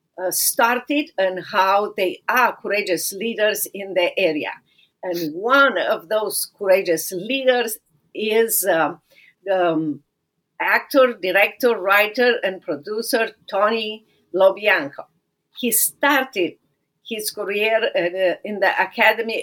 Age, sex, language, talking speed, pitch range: 50-69, female, English, 110 wpm, 185-245 Hz